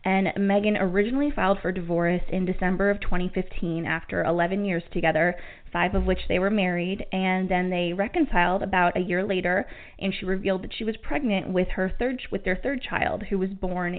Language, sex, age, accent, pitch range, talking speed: English, female, 20-39, American, 180-210 Hz, 195 wpm